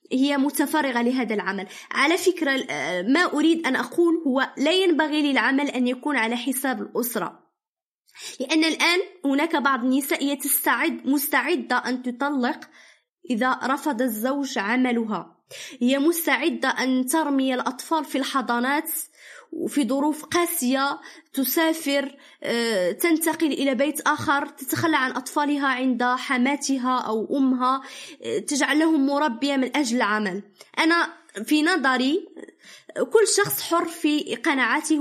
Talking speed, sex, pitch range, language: 115 wpm, female, 250-300 Hz, Arabic